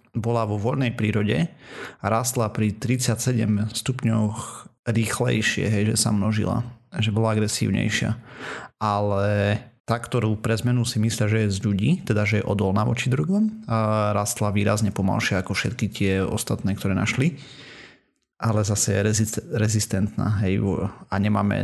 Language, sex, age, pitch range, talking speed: Slovak, male, 30-49, 105-120 Hz, 145 wpm